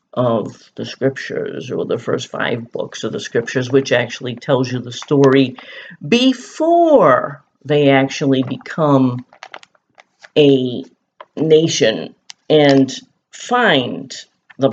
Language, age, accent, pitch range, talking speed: English, 50-69, American, 135-175 Hz, 105 wpm